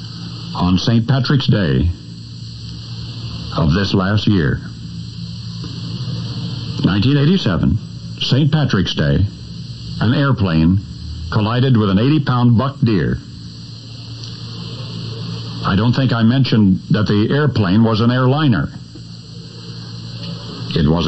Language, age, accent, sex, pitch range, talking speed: English, 60-79, American, male, 100-145 Hz, 95 wpm